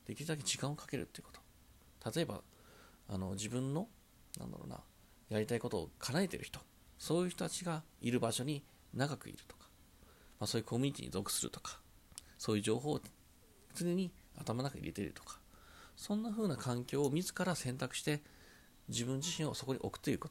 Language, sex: Japanese, male